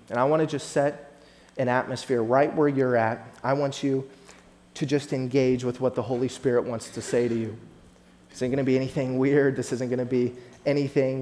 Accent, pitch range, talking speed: American, 115-140 Hz, 220 wpm